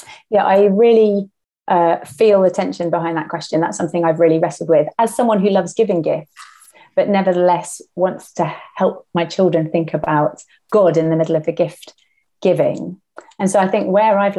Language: English